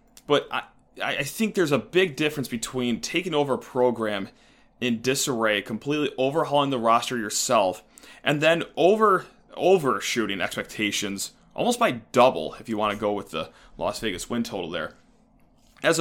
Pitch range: 115-145 Hz